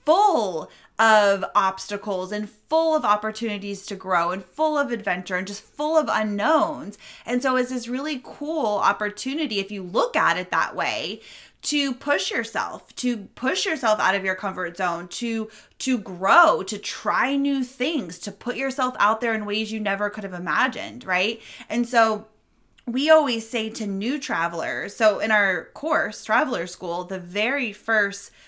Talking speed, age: 170 wpm, 20-39